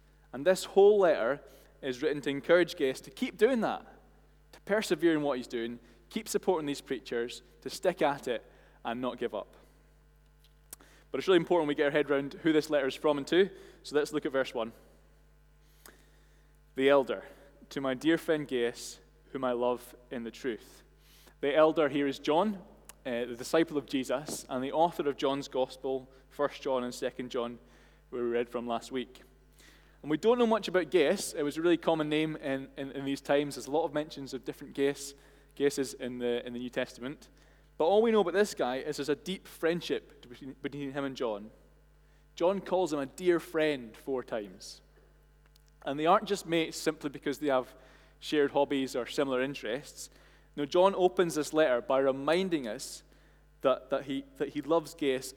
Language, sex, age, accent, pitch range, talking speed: English, male, 20-39, British, 130-160 Hz, 190 wpm